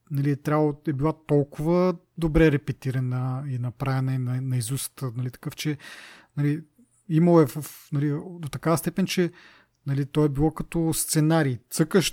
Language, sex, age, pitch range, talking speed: Bulgarian, male, 30-49, 140-165 Hz, 160 wpm